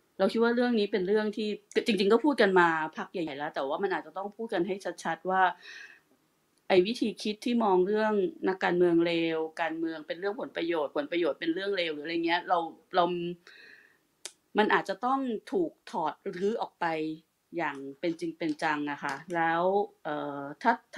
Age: 20-39